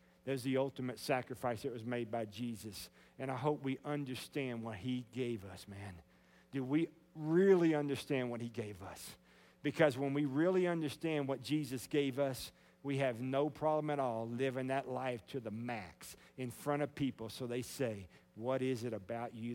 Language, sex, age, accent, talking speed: English, male, 50-69, American, 185 wpm